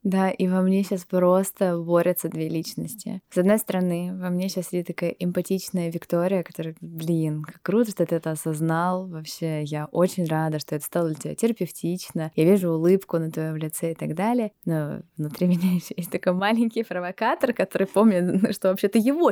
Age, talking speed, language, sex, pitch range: 20-39, 185 wpm, Russian, female, 165-215 Hz